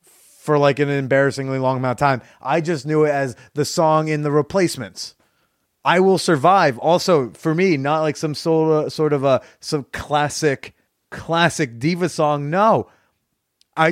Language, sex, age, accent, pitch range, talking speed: English, male, 30-49, American, 130-170 Hz, 165 wpm